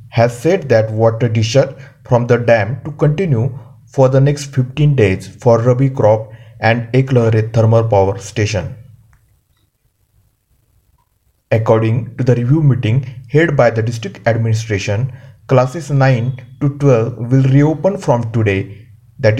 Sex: male